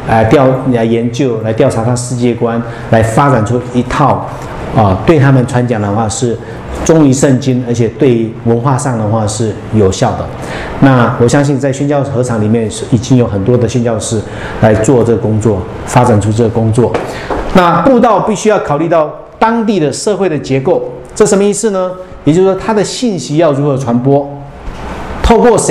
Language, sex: English, male